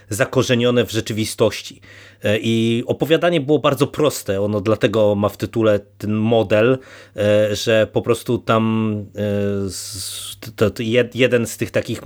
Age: 30-49